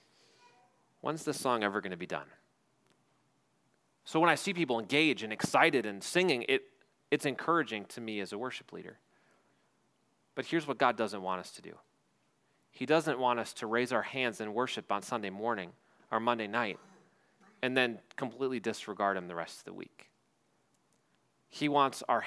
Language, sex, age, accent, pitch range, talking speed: English, male, 30-49, American, 105-135 Hz, 170 wpm